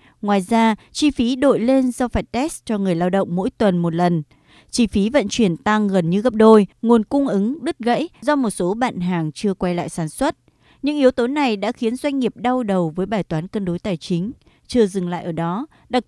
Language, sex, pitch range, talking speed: Vietnamese, female, 195-265 Hz, 240 wpm